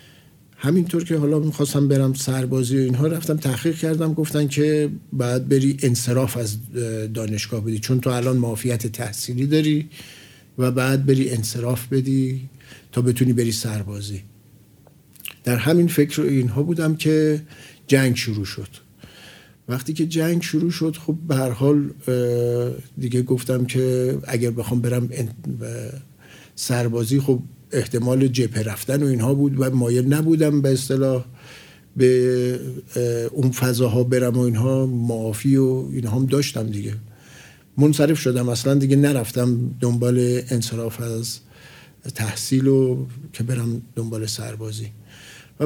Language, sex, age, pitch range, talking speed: Persian, male, 50-69, 120-140 Hz, 125 wpm